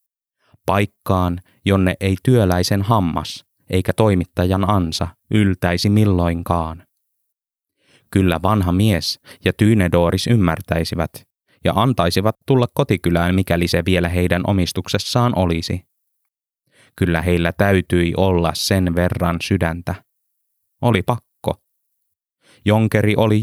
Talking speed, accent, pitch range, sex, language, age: 95 wpm, native, 85-105 Hz, male, Finnish, 20-39